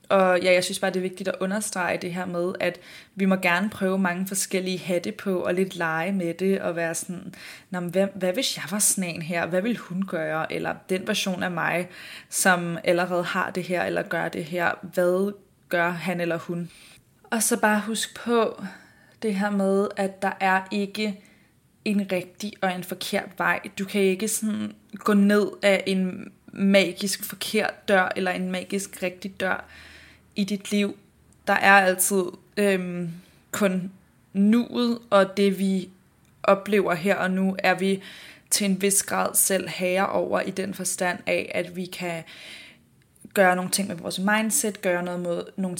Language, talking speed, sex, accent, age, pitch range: Danish, 175 wpm, female, native, 20-39, 180-205 Hz